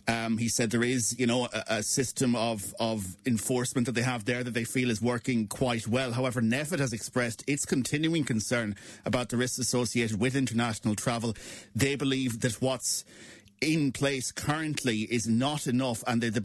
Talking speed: 185 wpm